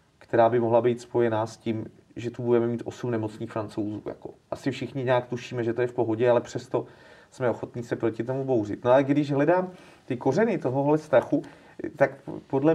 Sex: male